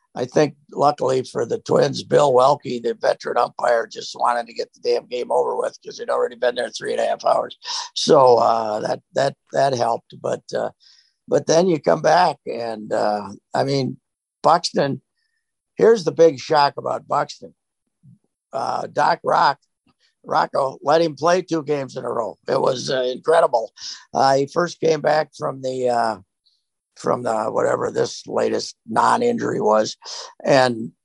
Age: 60-79